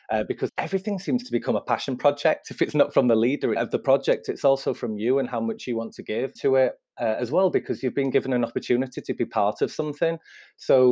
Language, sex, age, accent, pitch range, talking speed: English, male, 30-49, British, 115-135 Hz, 255 wpm